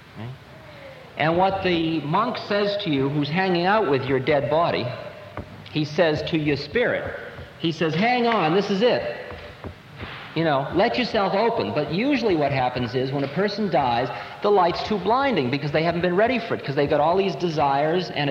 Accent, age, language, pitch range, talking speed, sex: American, 50-69, English, 145-200 Hz, 190 wpm, male